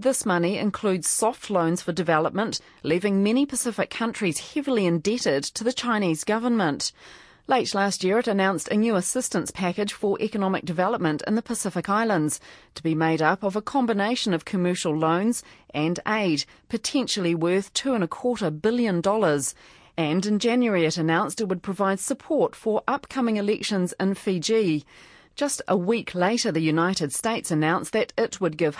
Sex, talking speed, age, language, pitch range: female, 165 wpm, 40-59, English, 165-220 Hz